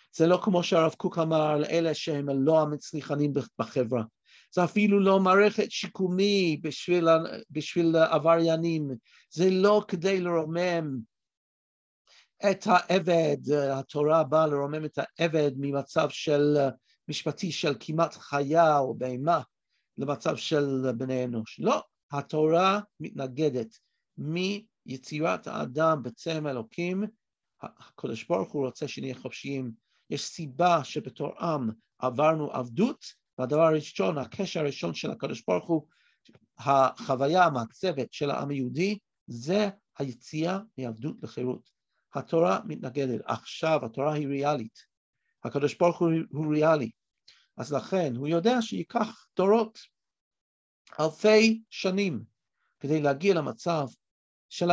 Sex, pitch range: male, 135-180 Hz